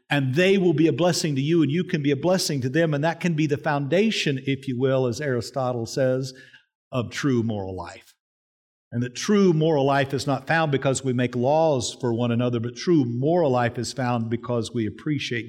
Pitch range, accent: 115-165 Hz, American